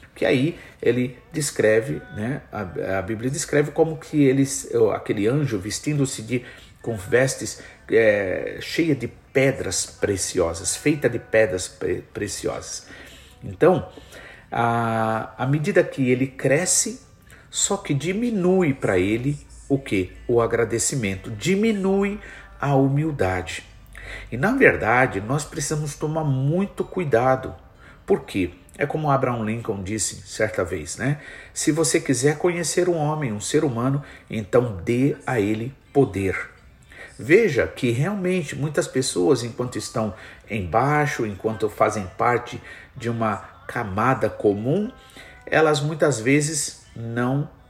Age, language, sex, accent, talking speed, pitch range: 50-69, Portuguese, male, Brazilian, 120 wpm, 115-155 Hz